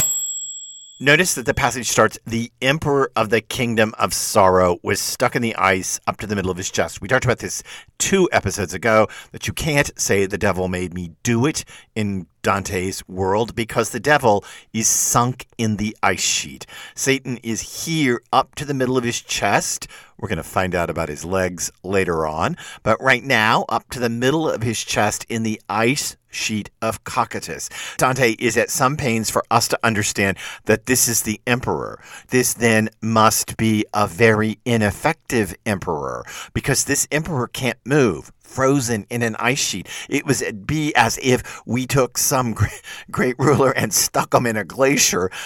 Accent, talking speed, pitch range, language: American, 180 wpm, 105-125 Hz, English